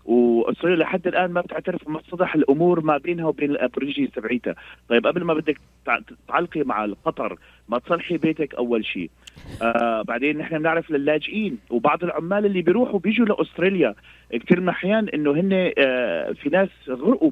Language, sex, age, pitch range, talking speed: Arabic, male, 30-49, 130-185 Hz, 155 wpm